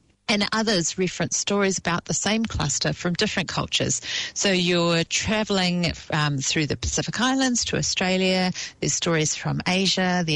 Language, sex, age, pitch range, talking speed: English, female, 40-59, 155-200 Hz, 150 wpm